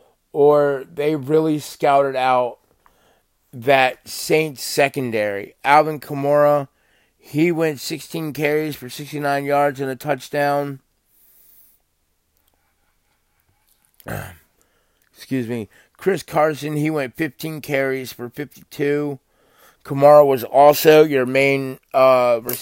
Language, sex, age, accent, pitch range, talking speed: English, male, 30-49, American, 130-150 Hz, 95 wpm